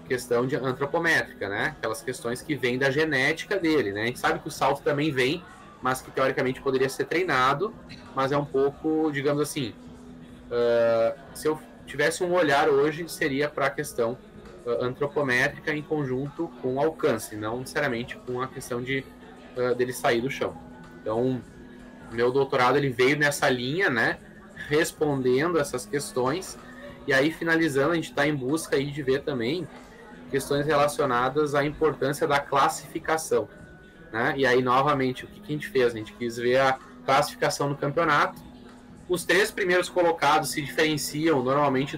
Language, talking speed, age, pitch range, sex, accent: Portuguese, 165 wpm, 10-29, 125-155 Hz, male, Brazilian